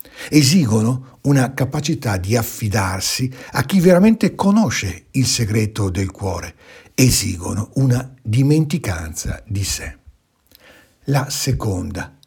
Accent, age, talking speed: native, 60-79, 100 wpm